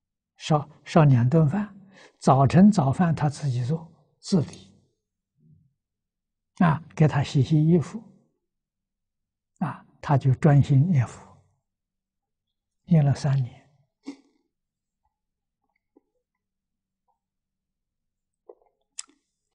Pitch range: 130-165 Hz